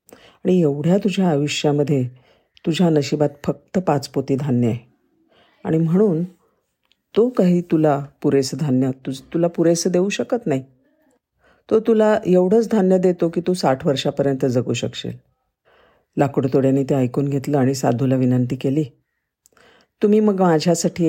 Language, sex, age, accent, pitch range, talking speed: Marathi, female, 50-69, native, 135-180 Hz, 130 wpm